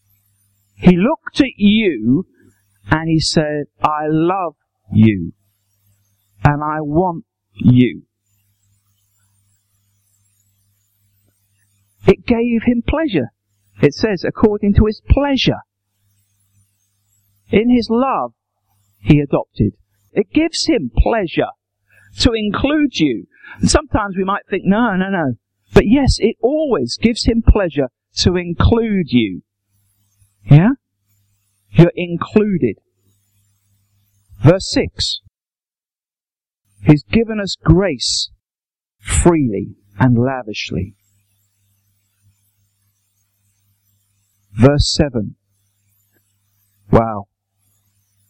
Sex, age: male, 50-69